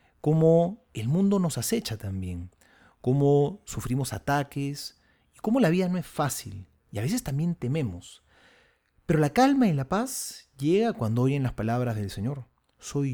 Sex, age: male, 40-59